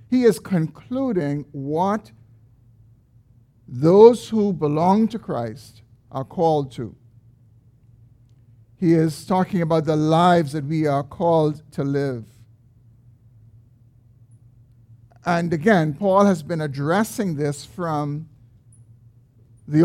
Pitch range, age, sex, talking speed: 115-175 Hz, 50-69, male, 100 wpm